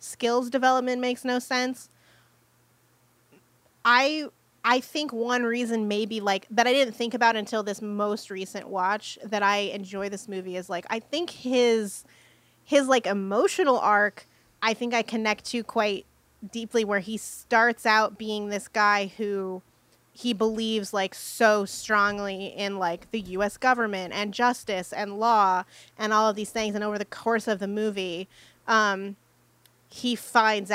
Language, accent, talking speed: English, American, 155 wpm